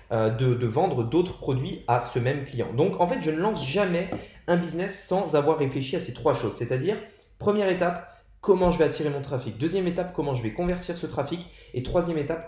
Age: 20-39